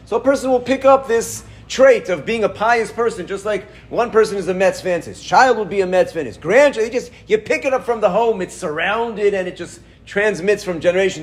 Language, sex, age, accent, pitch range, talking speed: English, male, 40-59, American, 160-220 Hz, 230 wpm